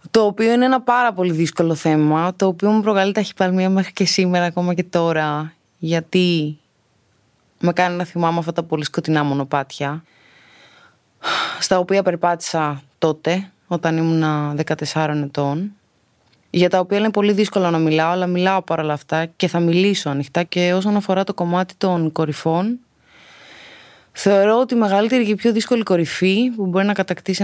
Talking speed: 160 wpm